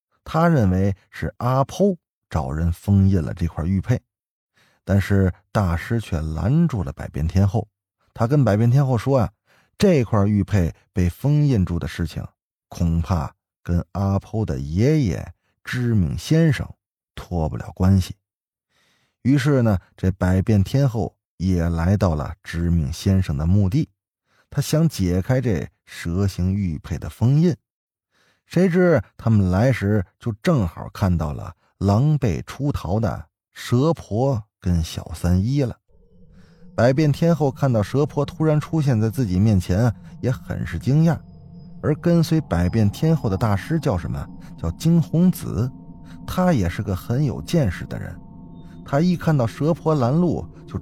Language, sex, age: Chinese, male, 20-39